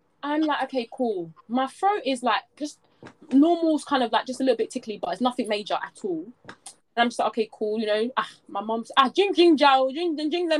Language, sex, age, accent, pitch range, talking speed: English, female, 20-39, British, 205-290 Hz, 240 wpm